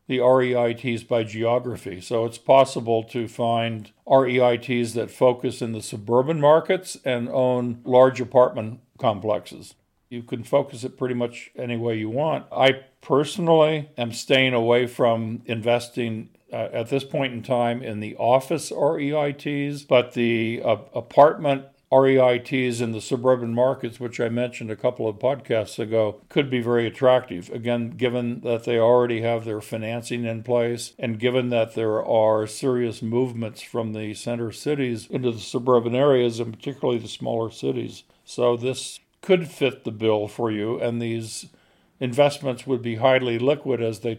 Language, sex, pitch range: English, male, 115-130 Hz